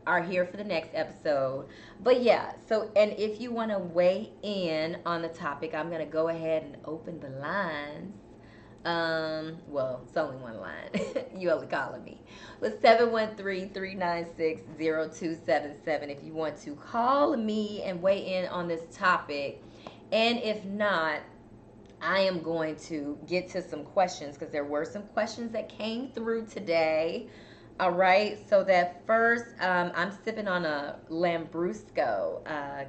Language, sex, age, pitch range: English, female, 20-39, 145-195 Hz